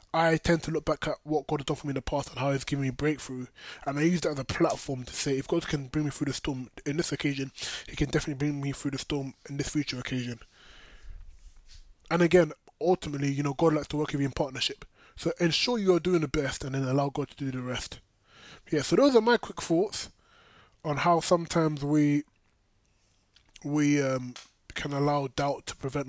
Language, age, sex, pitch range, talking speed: English, 20-39, male, 130-160 Hz, 230 wpm